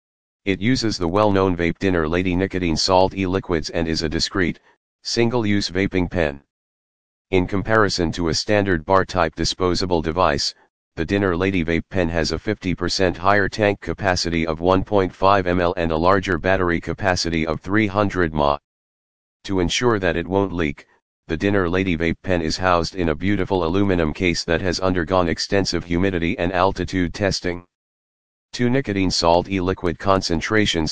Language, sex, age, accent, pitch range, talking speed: English, male, 40-59, American, 85-95 Hz, 155 wpm